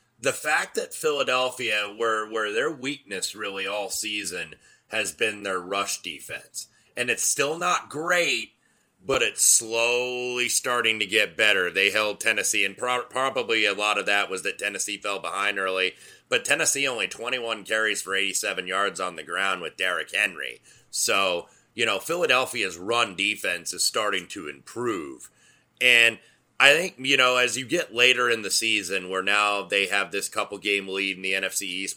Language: English